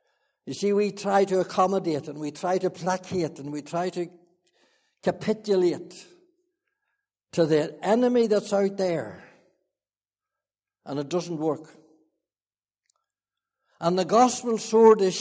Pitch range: 150-205 Hz